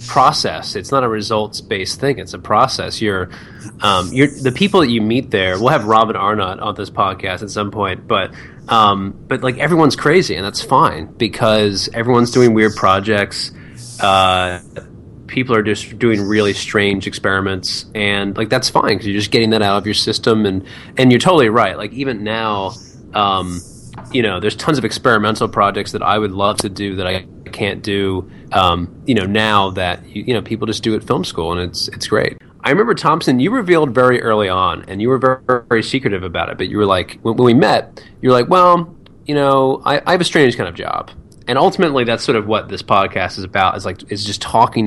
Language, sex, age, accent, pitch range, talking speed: English, male, 20-39, American, 95-120 Hz, 215 wpm